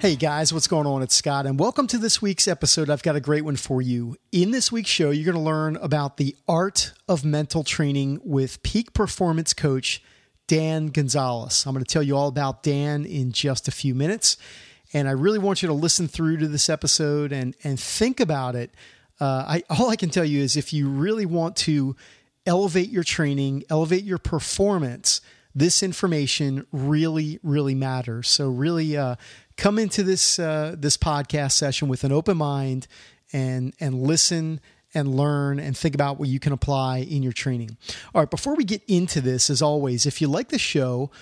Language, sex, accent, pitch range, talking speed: English, male, American, 135-165 Hz, 200 wpm